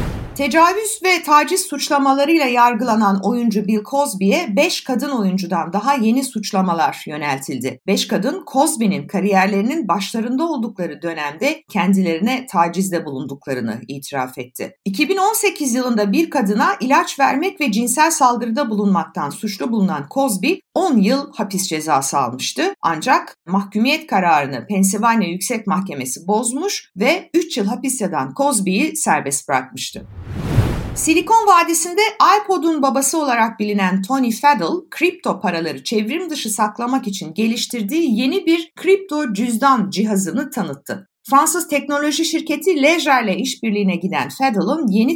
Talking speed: 115 wpm